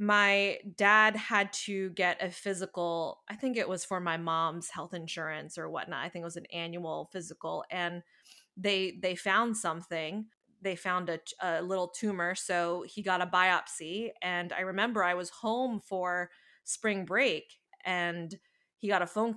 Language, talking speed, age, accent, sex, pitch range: English, 170 wpm, 20-39, American, female, 175-195 Hz